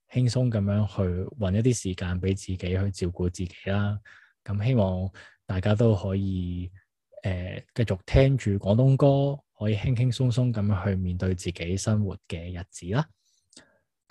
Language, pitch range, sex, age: Chinese, 95-115 Hz, male, 20-39